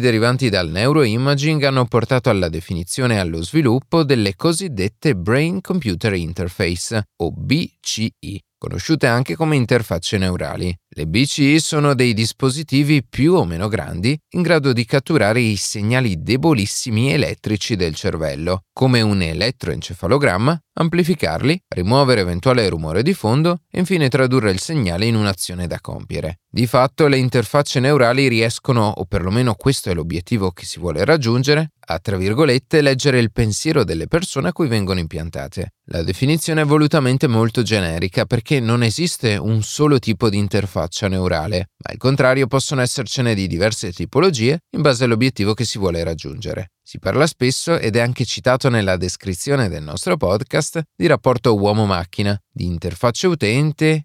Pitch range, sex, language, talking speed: 95-140 Hz, male, Italian, 150 wpm